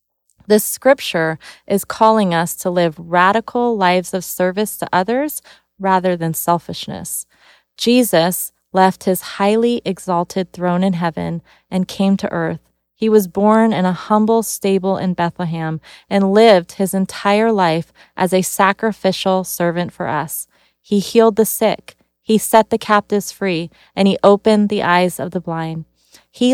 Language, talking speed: English, 150 wpm